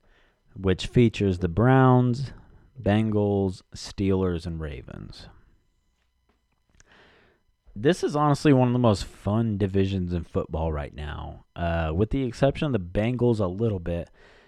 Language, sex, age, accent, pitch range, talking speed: English, male, 30-49, American, 85-115 Hz, 130 wpm